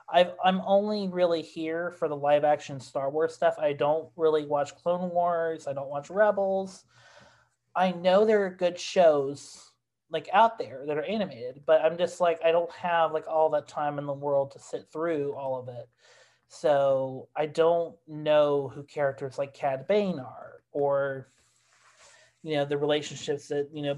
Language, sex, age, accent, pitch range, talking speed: English, male, 30-49, American, 145-175 Hz, 180 wpm